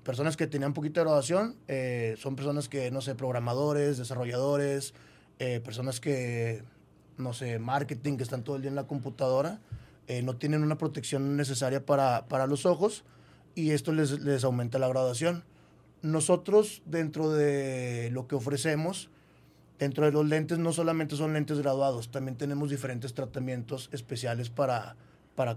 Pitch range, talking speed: 130-150 Hz, 155 wpm